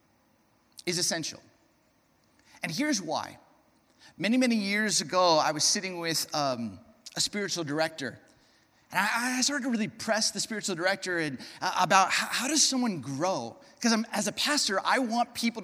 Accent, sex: American, male